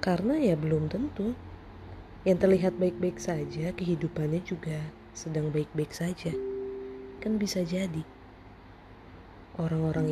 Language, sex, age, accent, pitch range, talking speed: Indonesian, female, 20-39, native, 130-175 Hz, 100 wpm